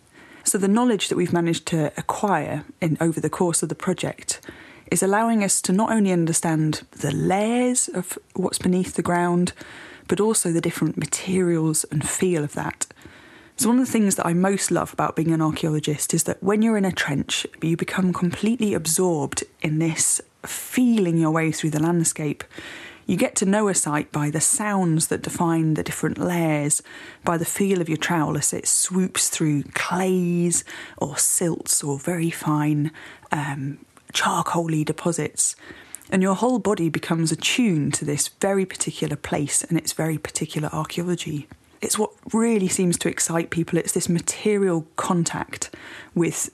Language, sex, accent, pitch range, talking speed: English, female, British, 155-190 Hz, 170 wpm